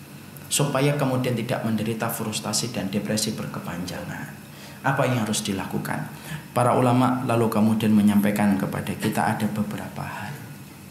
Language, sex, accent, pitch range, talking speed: Indonesian, male, native, 110-135 Hz, 120 wpm